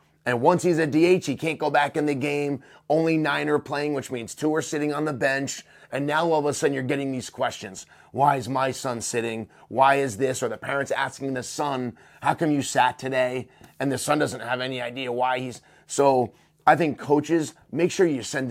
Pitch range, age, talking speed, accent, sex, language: 130-150 Hz, 30-49, 225 wpm, American, male, English